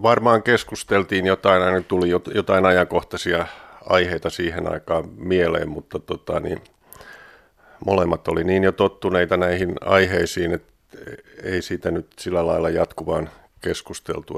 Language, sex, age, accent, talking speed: Finnish, male, 50-69, native, 120 wpm